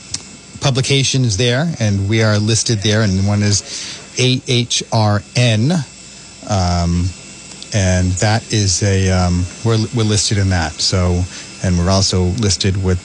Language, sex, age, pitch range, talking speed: English, male, 40-59, 95-120 Hz, 145 wpm